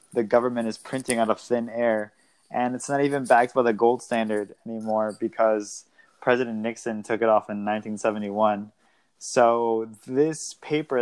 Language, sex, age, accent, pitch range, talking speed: English, male, 20-39, American, 110-120 Hz, 160 wpm